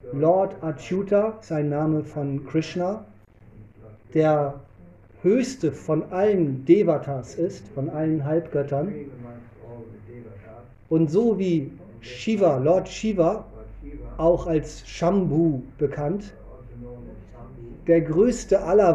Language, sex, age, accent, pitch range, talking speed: German, male, 40-59, German, 115-165 Hz, 90 wpm